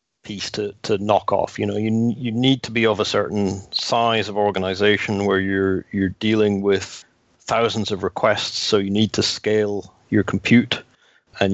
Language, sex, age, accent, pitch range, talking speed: English, male, 40-59, British, 105-120 Hz, 175 wpm